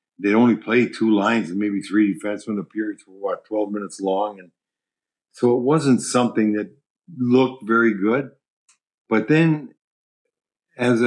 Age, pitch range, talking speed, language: 50-69, 105-125 Hz, 150 wpm, English